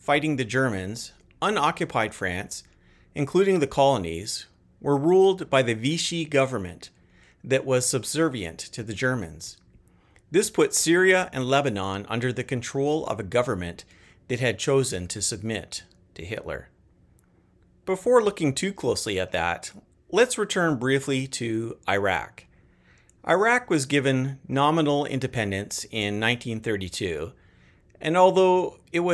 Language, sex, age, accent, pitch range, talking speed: English, male, 40-59, American, 100-145 Hz, 115 wpm